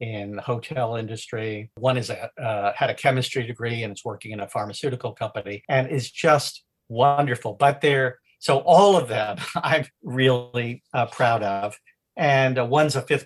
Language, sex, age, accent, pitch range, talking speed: English, male, 50-69, American, 125-170 Hz, 175 wpm